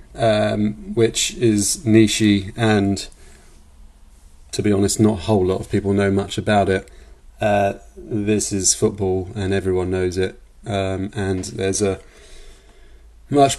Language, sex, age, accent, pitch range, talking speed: English, male, 30-49, British, 95-110 Hz, 135 wpm